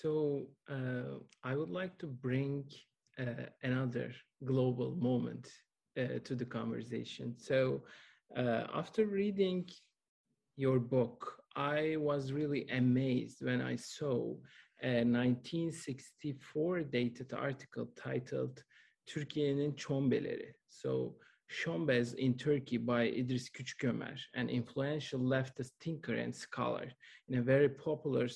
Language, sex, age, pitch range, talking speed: Turkish, male, 40-59, 125-150 Hz, 110 wpm